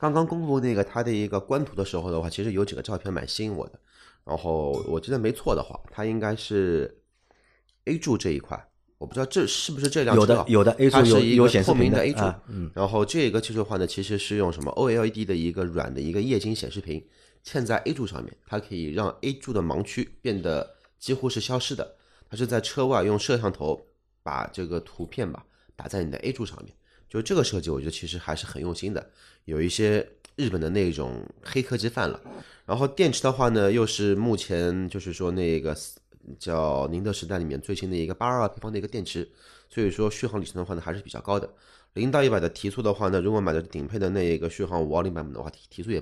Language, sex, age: Chinese, male, 30-49